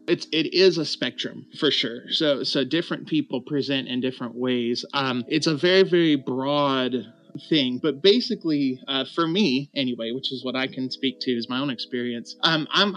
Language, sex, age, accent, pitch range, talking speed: English, male, 30-49, American, 135-160 Hz, 190 wpm